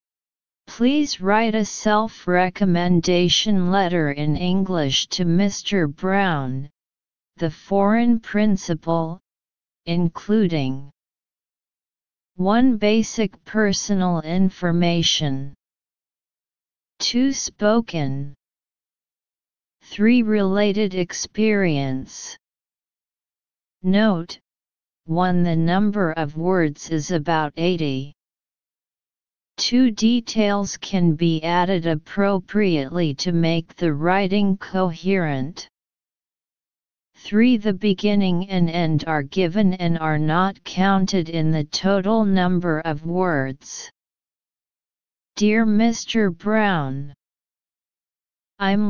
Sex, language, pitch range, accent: female, English, 160-205 Hz, American